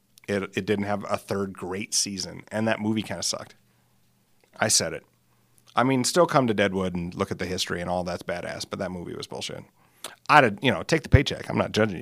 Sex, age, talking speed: male, 40-59, 230 wpm